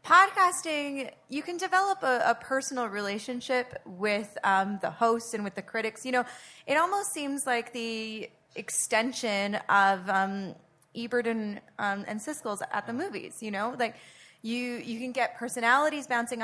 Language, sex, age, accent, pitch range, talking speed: English, female, 20-39, American, 205-265 Hz, 155 wpm